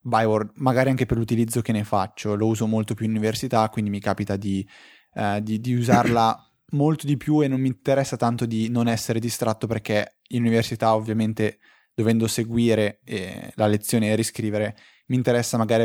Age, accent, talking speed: 20-39, native, 175 wpm